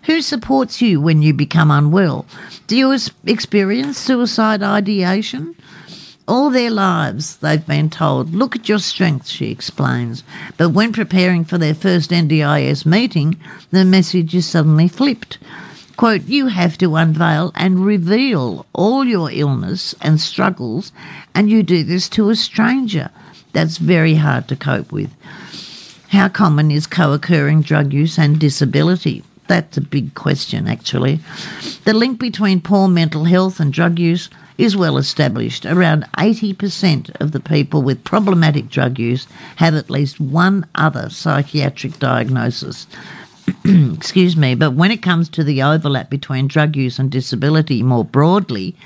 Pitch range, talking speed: 150-195 Hz, 145 wpm